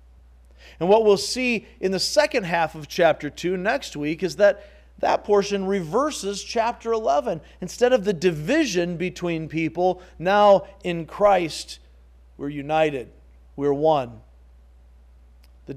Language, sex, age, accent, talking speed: English, male, 40-59, American, 130 wpm